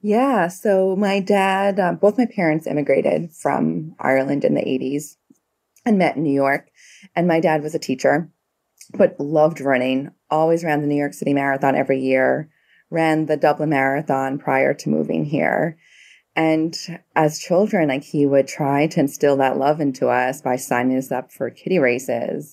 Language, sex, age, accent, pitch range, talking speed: English, female, 20-39, American, 135-165 Hz, 175 wpm